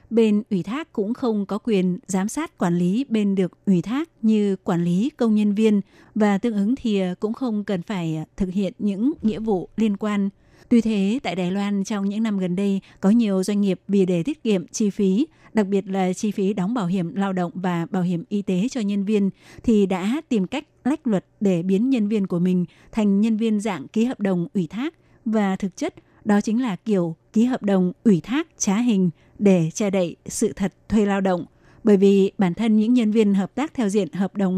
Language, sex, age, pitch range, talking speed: Vietnamese, female, 20-39, 190-225 Hz, 225 wpm